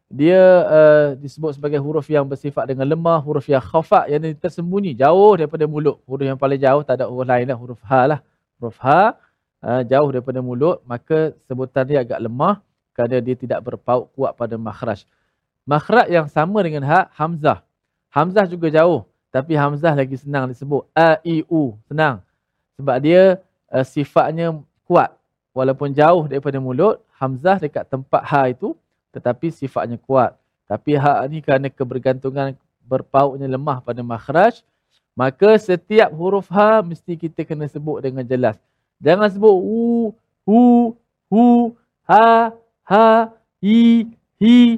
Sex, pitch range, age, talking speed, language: male, 135-200 Hz, 20-39, 145 wpm, Malayalam